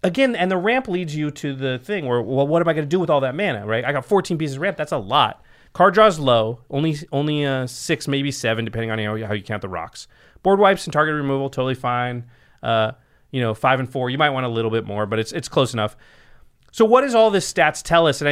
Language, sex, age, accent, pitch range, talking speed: English, male, 30-49, American, 115-165 Hz, 270 wpm